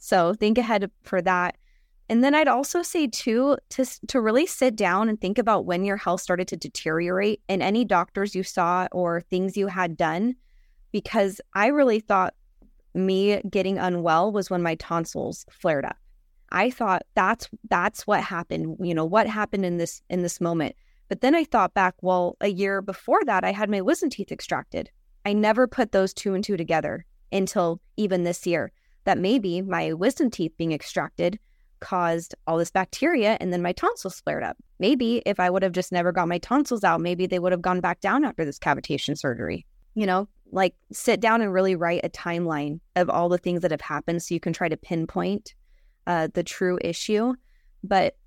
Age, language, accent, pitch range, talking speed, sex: 20-39, English, American, 175-215 Hz, 195 wpm, female